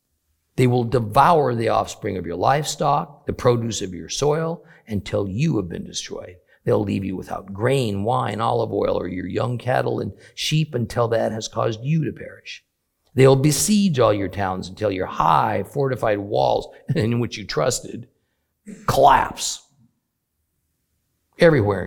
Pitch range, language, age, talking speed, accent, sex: 95-125 Hz, English, 50-69, 155 wpm, American, male